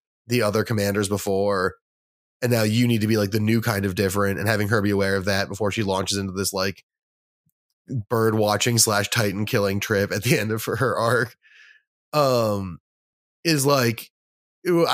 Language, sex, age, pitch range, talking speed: English, male, 20-39, 105-120 Hz, 180 wpm